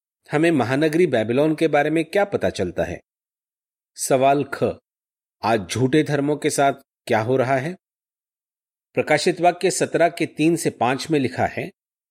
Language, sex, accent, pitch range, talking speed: Hindi, male, native, 125-165 Hz, 155 wpm